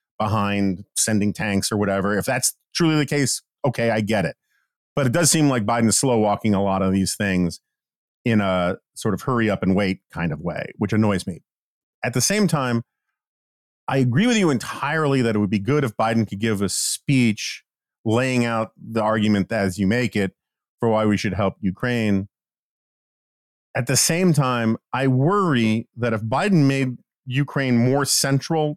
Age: 40-59